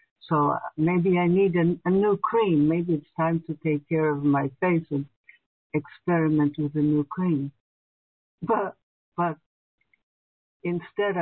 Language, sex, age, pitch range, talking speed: English, female, 60-79, 150-180 Hz, 135 wpm